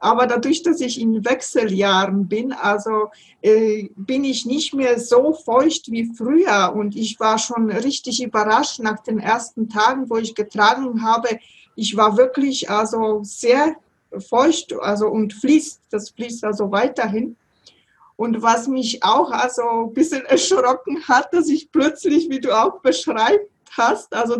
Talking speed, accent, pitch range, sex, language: 150 wpm, German, 215-265 Hz, female, German